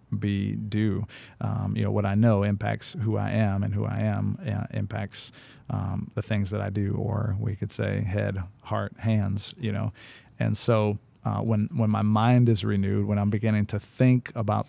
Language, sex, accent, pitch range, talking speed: English, male, American, 105-120 Hz, 195 wpm